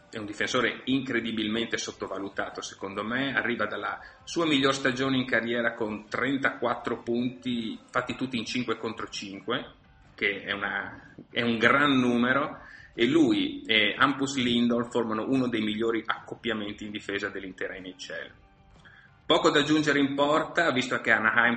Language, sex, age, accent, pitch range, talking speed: Italian, male, 30-49, native, 105-130 Hz, 140 wpm